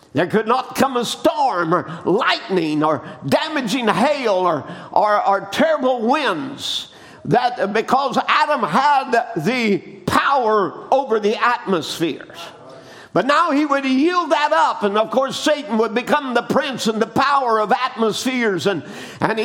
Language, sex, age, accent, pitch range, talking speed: English, male, 50-69, American, 215-280 Hz, 145 wpm